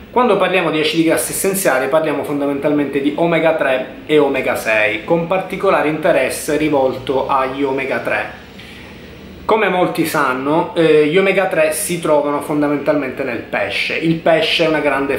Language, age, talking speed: Italian, 20-39, 150 wpm